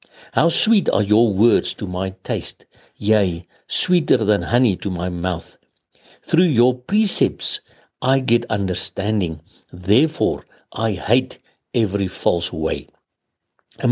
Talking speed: 120 wpm